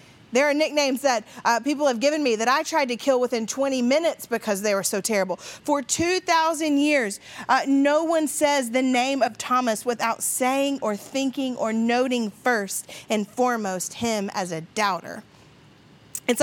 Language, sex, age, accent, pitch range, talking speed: English, female, 40-59, American, 230-285 Hz, 170 wpm